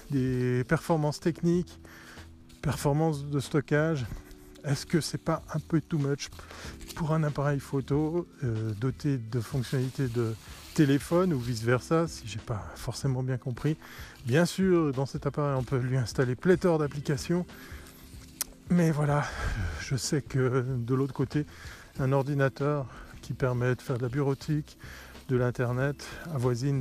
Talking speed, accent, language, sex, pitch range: 145 wpm, French, French, male, 120-150 Hz